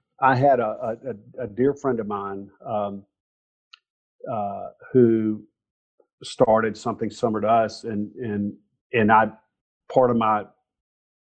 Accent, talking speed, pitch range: American, 130 wpm, 105-130 Hz